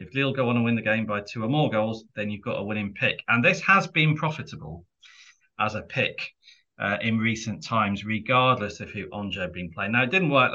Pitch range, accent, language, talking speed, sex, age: 110-130 Hz, British, English, 240 wpm, male, 30-49